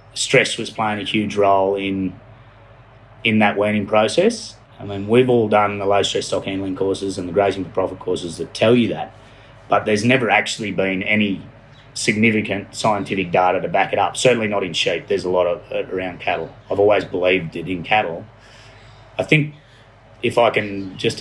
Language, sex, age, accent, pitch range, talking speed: English, male, 30-49, Australian, 95-115 Hz, 190 wpm